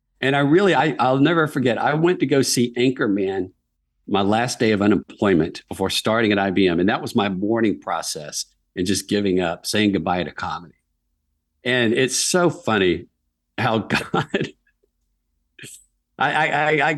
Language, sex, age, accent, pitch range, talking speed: English, male, 50-69, American, 90-120 Hz, 160 wpm